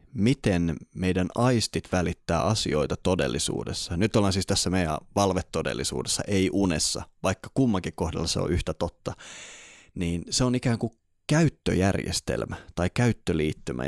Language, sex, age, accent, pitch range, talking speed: Finnish, male, 20-39, native, 85-110 Hz, 125 wpm